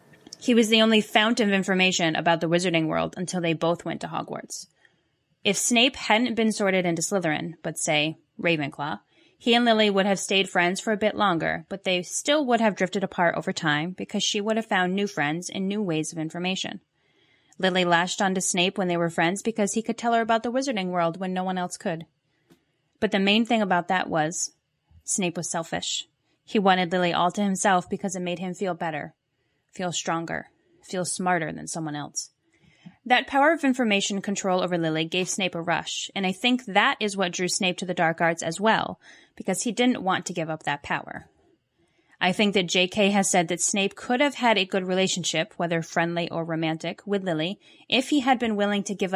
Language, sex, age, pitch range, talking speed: English, female, 10-29, 170-205 Hz, 210 wpm